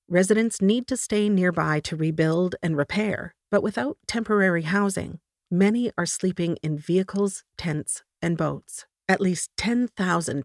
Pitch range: 165-205 Hz